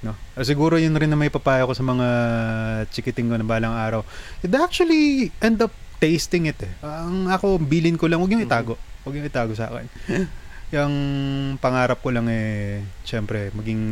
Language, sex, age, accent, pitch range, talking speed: Filipino, male, 20-39, native, 110-165 Hz, 185 wpm